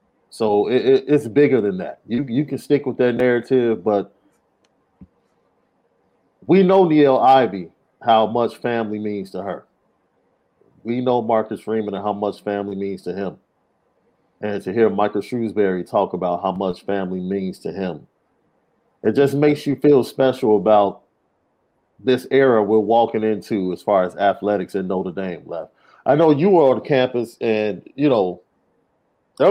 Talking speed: 160 wpm